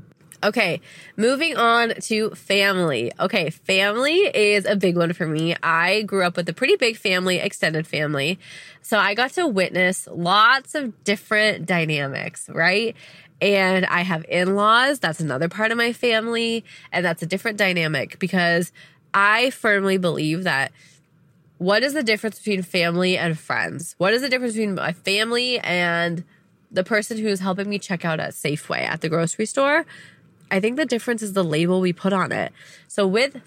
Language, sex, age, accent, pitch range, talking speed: English, female, 20-39, American, 165-215 Hz, 170 wpm